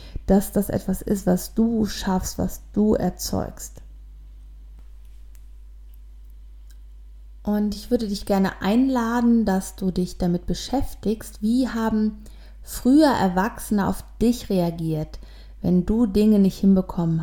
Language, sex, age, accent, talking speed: German, female, 30-49, German, 115 wpm